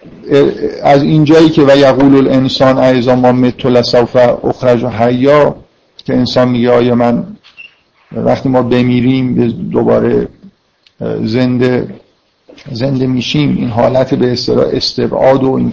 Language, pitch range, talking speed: Persian, 120-135 Hz, 115 wpm